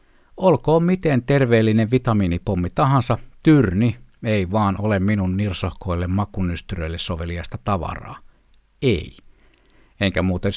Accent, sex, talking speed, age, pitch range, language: native, male, 95 wpm, 60-79, 95-125 Hz, Finnish